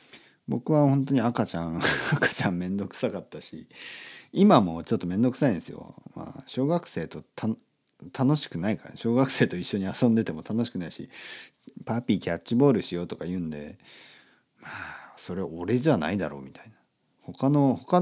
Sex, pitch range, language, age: male, 95-140 Hz, Japanese, 40-59